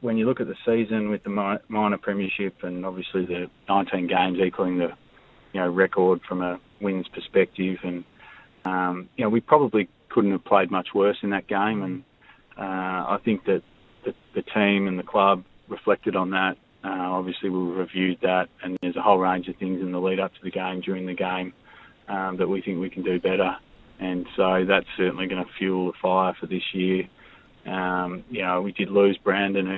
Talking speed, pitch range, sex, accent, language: 200 wpm, 90-100 Hz, male, Australian, English